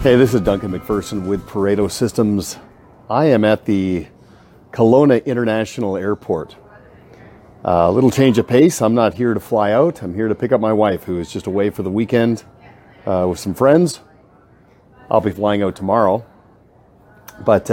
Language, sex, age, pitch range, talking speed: English, male, 40-59, 95-120 Hz, 175 wpm